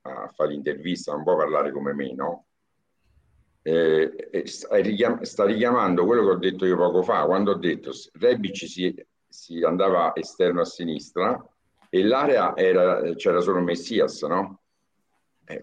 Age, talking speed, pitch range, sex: 50-69, 150 wpm, 85-115 Hz, male